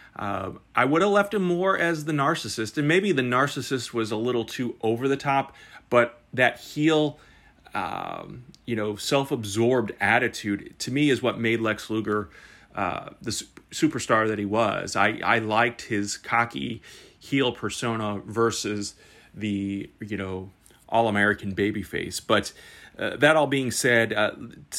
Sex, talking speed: male, 155 wpm